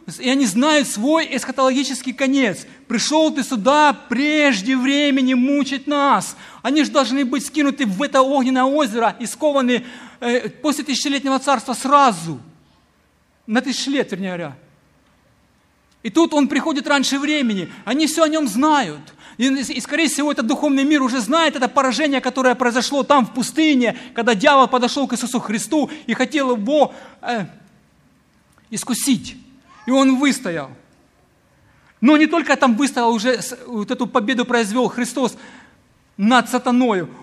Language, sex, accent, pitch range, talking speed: Ukrainian, male, native, 235-275 Hz, 140 wpm